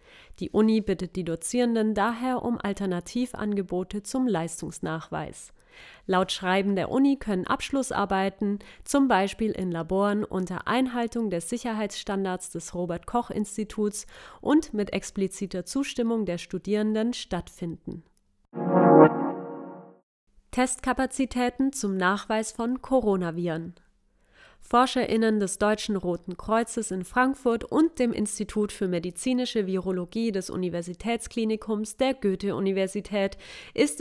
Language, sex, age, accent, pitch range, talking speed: German, female, 30-49, German, 185-230 Hz, 100 wpm